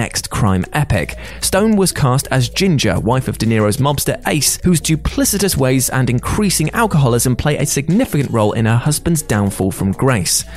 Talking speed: 170 wpm